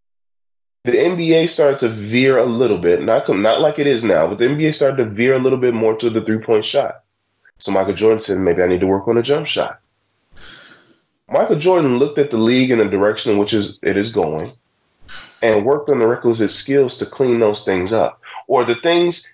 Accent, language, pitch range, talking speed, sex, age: American, English, 105-150 Hz, 220 wpm, male, 20-39